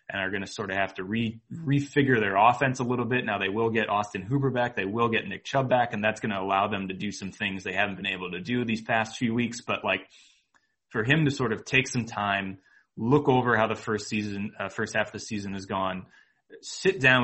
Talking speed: 260 wpm